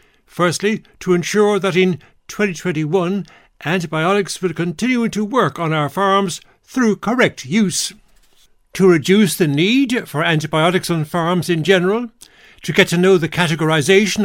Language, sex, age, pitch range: English, male, 60-79, 170-210 Hz